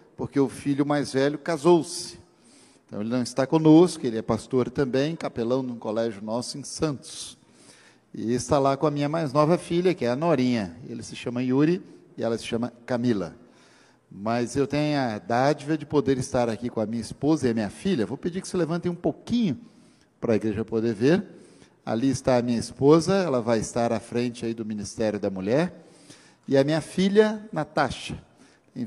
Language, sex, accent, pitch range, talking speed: Portuguese, male, Brazilian, 120-155 Hz, 195 wpm